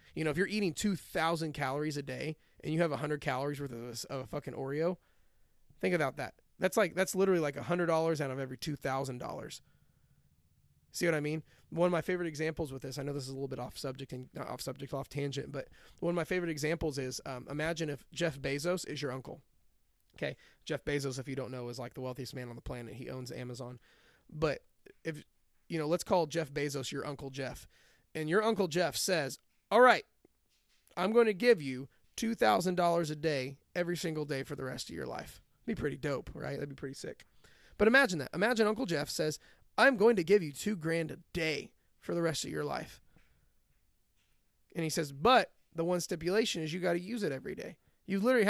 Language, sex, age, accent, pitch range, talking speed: English, male, 30-49, American, 135-175 Hz, 220 wpm